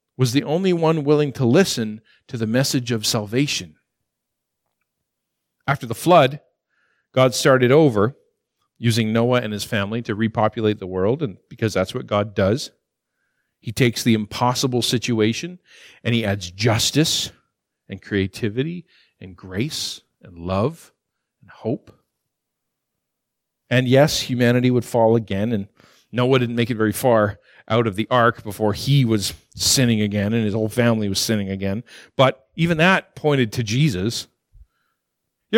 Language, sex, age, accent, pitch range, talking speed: English, male, 40-59, American, 110-145 Hz, 145 wpm